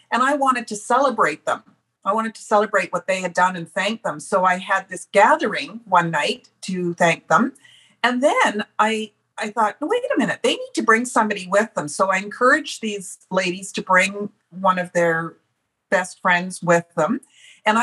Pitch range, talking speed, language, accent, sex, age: 180-220 Hz, 190 wpm, English, American, female, 50-69